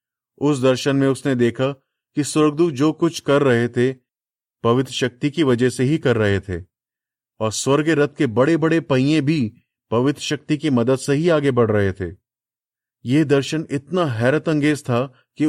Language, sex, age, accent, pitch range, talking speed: Hindi, male, 30-49, native, 115-150 Hz, 175 wpm